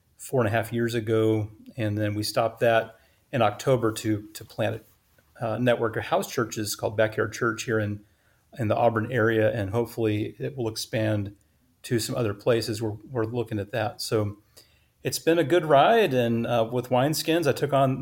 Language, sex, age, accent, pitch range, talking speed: English, male, 40-59, American, 110-120 Hz, 195 wpm